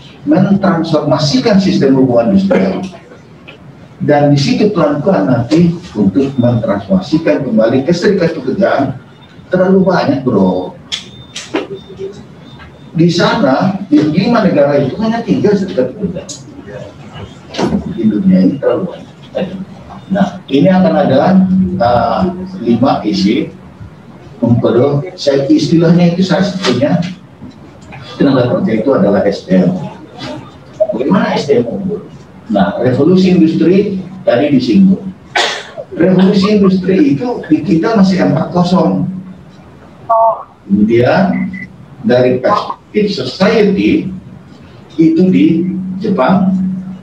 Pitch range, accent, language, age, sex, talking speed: 145-195 Hz, native, Indonesian, 50-69, male, 85 wpm